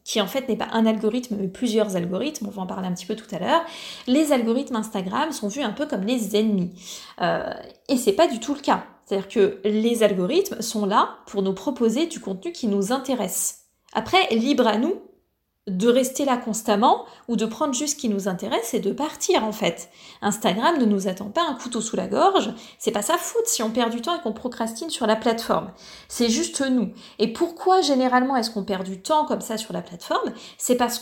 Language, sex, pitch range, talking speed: French, female, 215-290 Hz, 225 wpm